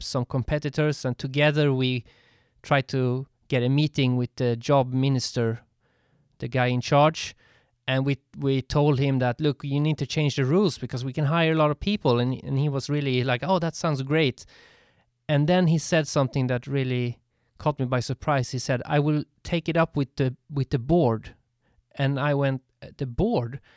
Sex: male